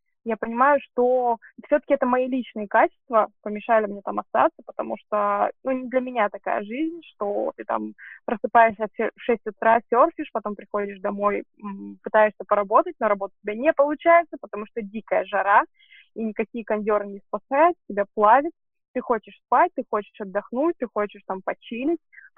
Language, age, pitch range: Russian, 20-39, 205-275 Hz